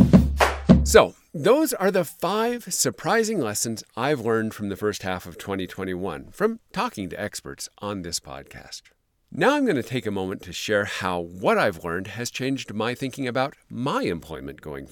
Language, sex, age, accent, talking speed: English, male, 50-69, American, 175 wpm